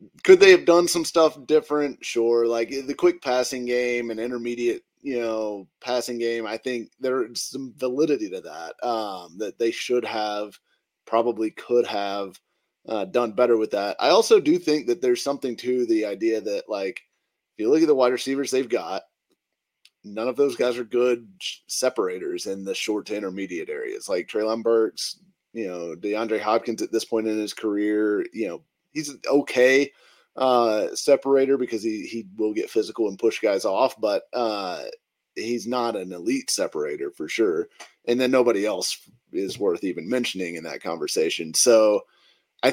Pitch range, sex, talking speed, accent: 115-160 Hz, male, 175 wpm, American